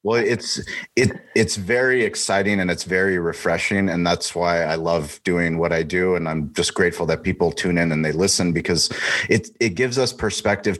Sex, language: male, English